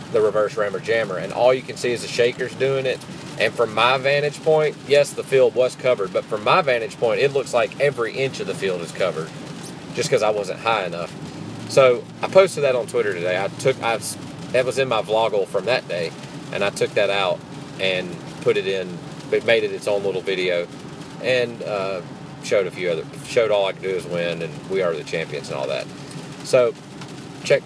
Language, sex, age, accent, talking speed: English, male, 30-49, American, 220 wpm